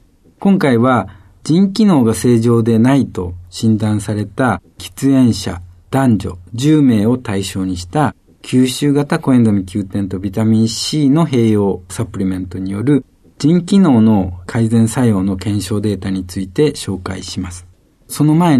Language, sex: Japanese, male